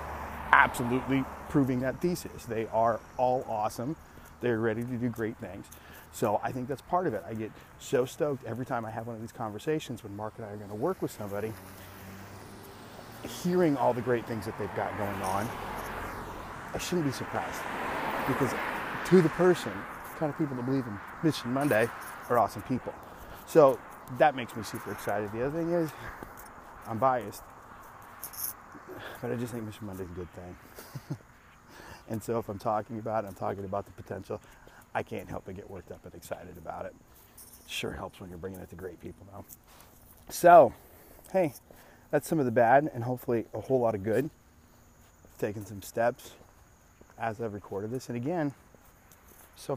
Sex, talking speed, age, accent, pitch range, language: male, 180 wpm, 30-49, American, 100-130 Hz, English